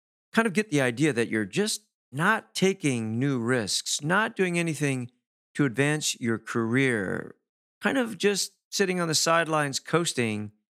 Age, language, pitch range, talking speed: 50-69, English, 110-150 Hz, 150 wpm